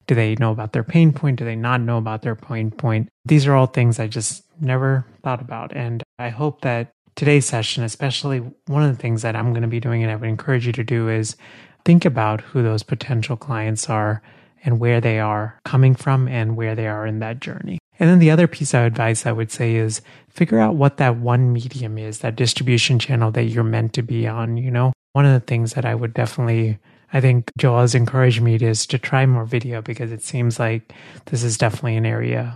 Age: 30-49